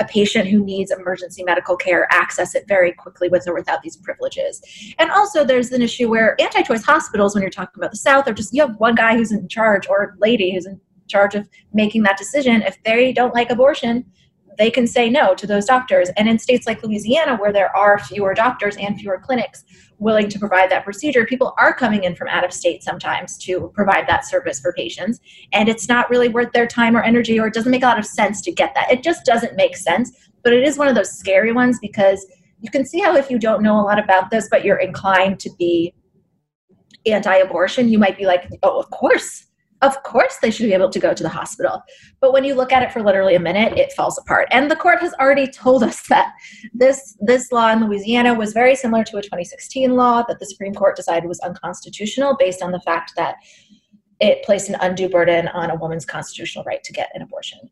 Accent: American